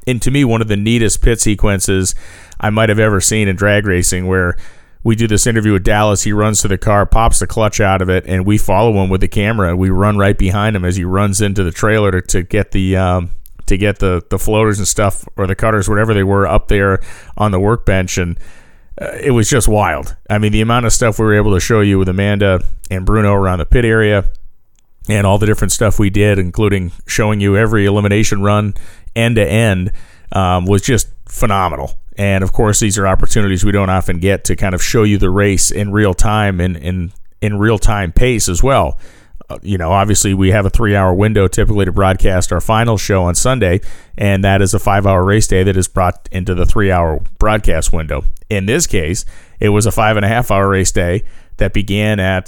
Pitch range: 95-105 Hz